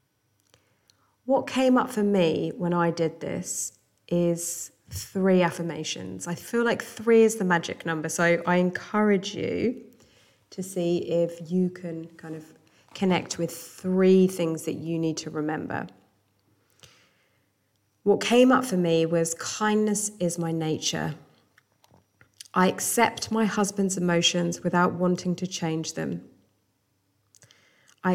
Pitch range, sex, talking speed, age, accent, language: 125-190 Hz, female, 130 wpm, 20-39, British, English